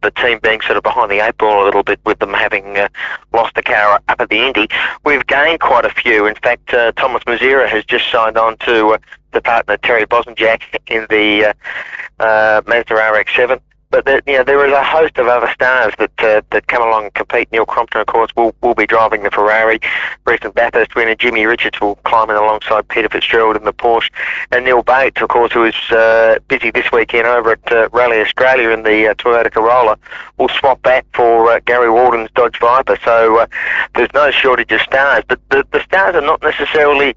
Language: English